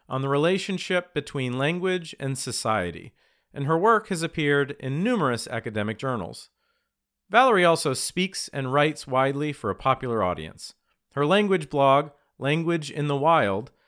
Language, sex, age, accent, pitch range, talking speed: English, male, 40-59, American, 115-155 Hz, 145 wpm